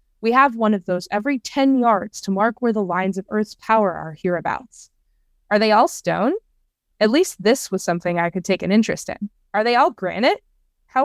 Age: 20-39